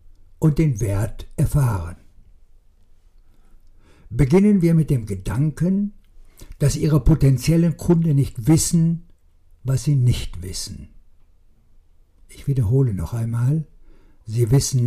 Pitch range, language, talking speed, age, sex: 105-150 Hz, German, 100 wpm, 60-79, male